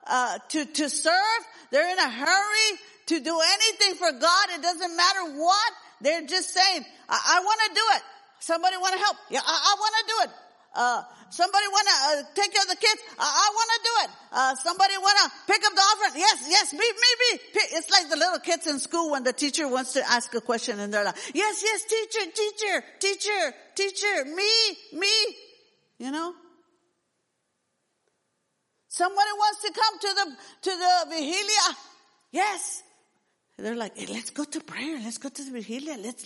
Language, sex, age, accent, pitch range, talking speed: English, female, 50-69, American, 250-400 Hz, 195 wpm